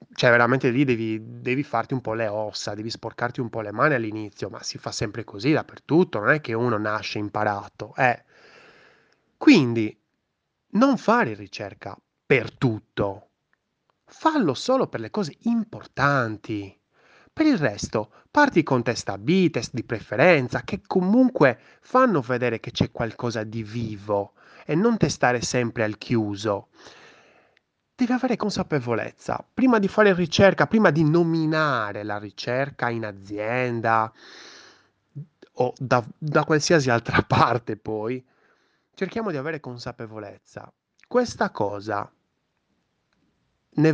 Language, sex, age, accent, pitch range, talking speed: Italian, male, 20-39, native, 110-160 Hz, 130 wpm